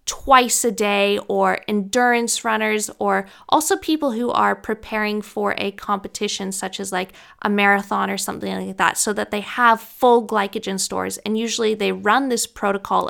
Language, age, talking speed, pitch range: English, 20-39, 170 wpm, 195-235 Hz